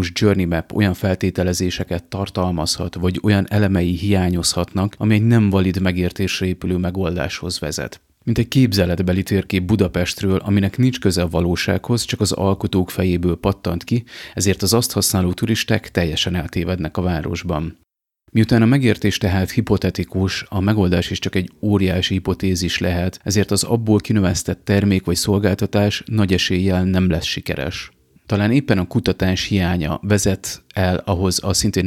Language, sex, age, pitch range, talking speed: Hungarian, male, 30-49, 90-105 Hz, 145 wpm